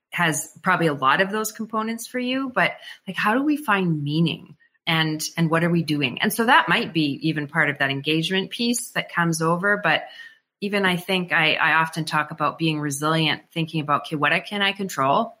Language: English